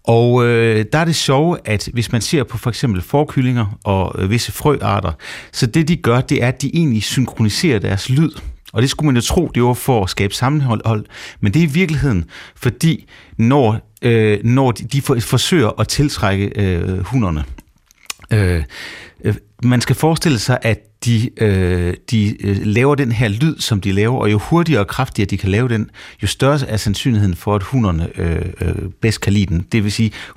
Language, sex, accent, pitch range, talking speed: Danish, male, native, 100-135 Hz, 180 wpm